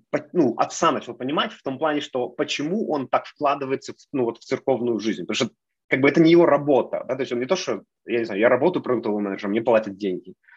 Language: Ukrainian